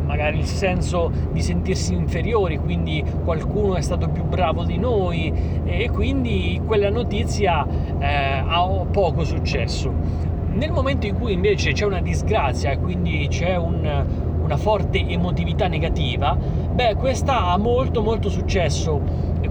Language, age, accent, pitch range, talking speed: Italian, 30-49, native, 80-90 Hz, 140 wpm